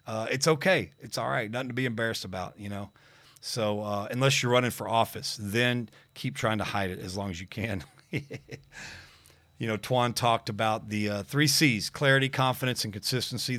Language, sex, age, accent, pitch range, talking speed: English, male, 40-59, American, 105-130 Hz, 195 wpm